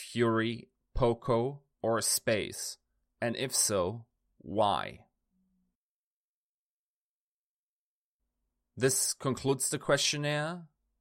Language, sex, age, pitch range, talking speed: English, male, 30-49, 105-130 Hz, 65 wpm